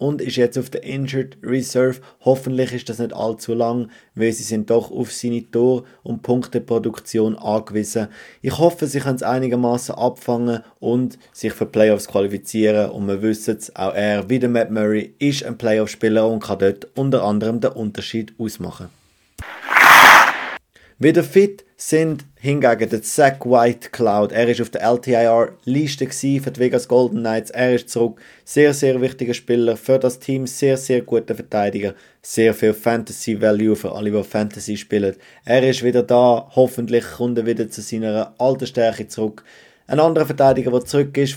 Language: German